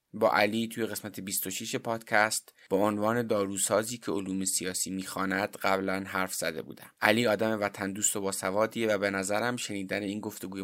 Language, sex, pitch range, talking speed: Persian, male, 100-110 Hz, 165 wpm